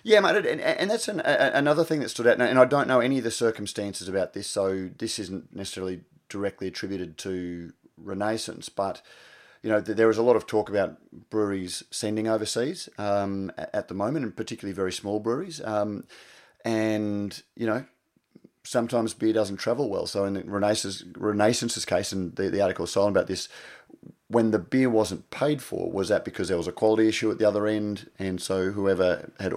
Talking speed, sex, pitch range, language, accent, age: 195 wpm, male, 95-110 Hz, English, Australian, 30-49